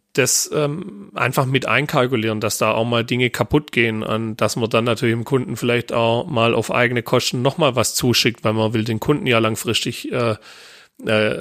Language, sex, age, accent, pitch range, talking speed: German, male, 40-59, German, 110-135 Hz, 195 wpm